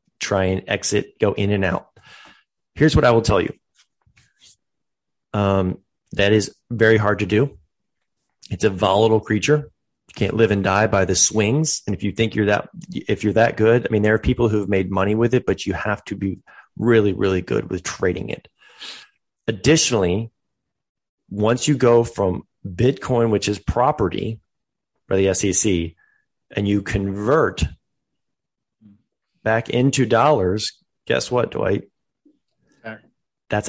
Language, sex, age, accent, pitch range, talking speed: English, male, 30-49, American, 95-115 Hz, 155 wpm